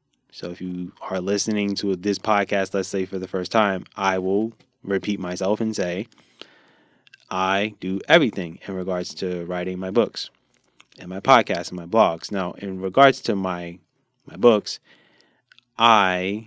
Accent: American